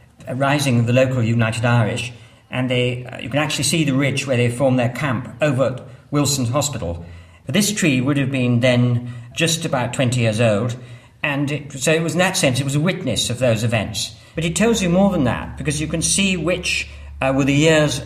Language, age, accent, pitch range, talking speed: English, 50-69, British, 115-150 Hz, 225 wpm